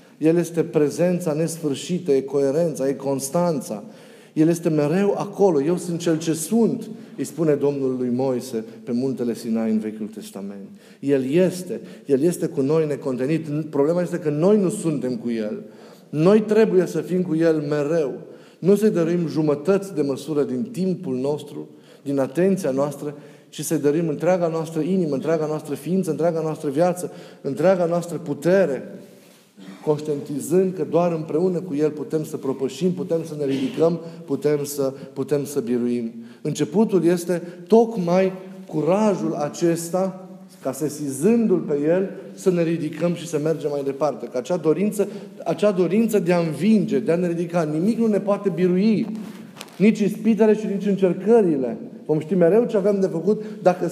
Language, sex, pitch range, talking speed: Romanian, male, 145-190 Hz, 160 wpm